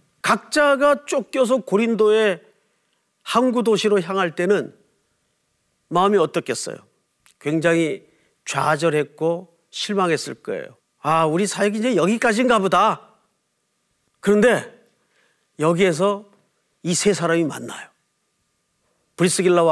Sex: male